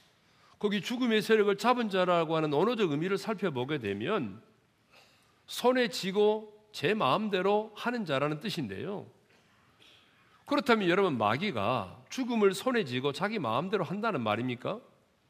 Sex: male